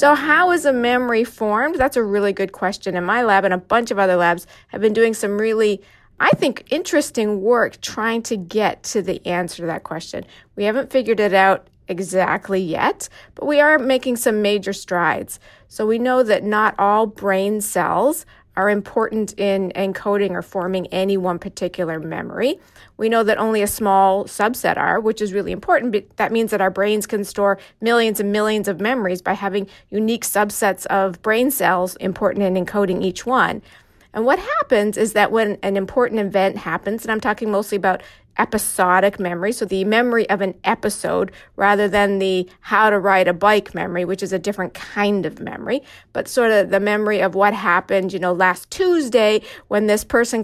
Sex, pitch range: female, 190-225 Hz